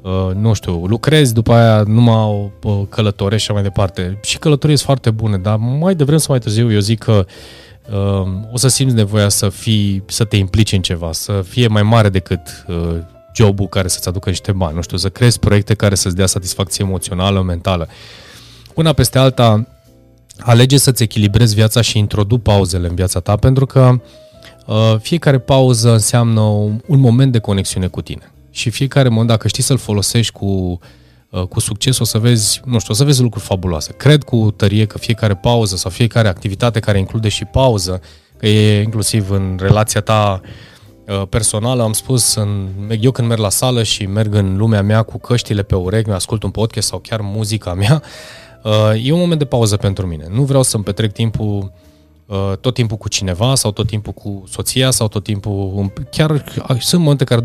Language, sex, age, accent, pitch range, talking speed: Romanian, male, 20-39, native, 100-120 Hz, 190 wpm